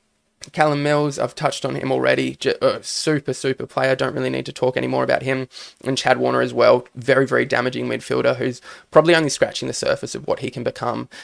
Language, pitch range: English, 125-150 Hz